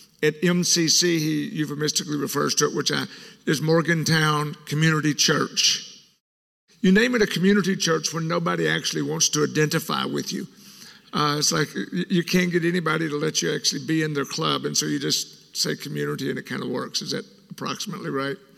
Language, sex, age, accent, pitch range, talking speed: English, male, 50-69, American, 150-195 Hz, 180 wpm